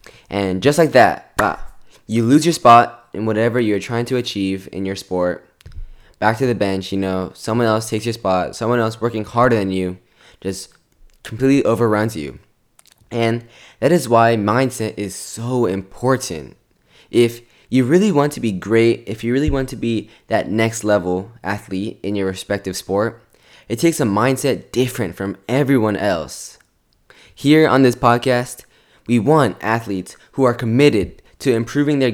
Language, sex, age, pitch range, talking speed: English, male, 10-29, 100-130 Hz, 165 wpm